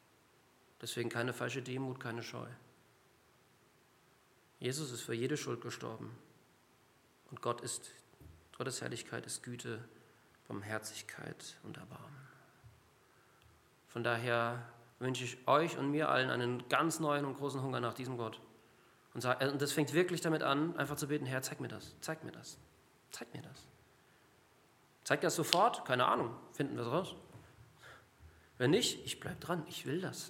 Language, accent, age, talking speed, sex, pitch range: German, German, 40-59, 150 wpm, male, 120-145 Hz